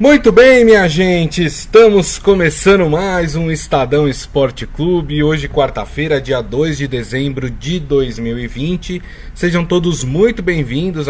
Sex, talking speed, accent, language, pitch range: male, 125 wpm, Brazilian, Portuguese, 130-175 Hz